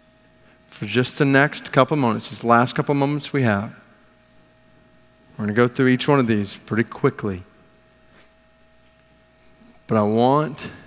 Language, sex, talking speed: English, male, 145 wpm